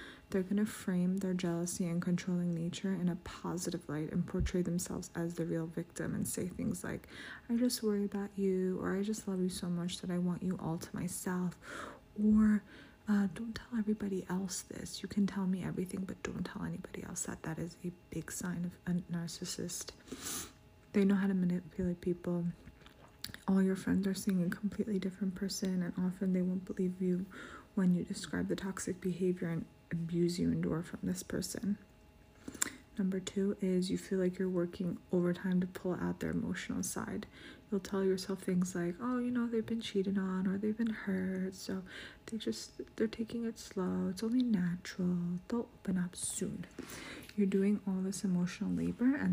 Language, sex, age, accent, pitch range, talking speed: English, female, 30-49, American, 180-200 Hz, 190 wpm